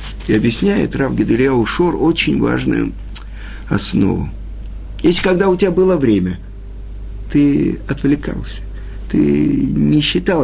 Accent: native